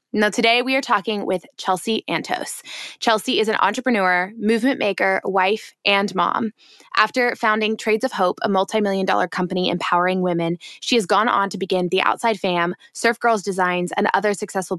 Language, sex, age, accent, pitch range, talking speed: English, female, 20-39, American, 185-230 Hz, 175 wpm